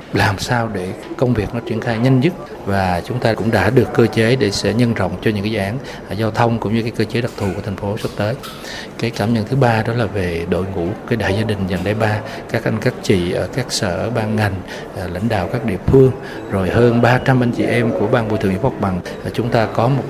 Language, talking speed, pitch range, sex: Vietnamese, 270 wpm, 100-120 Hz, male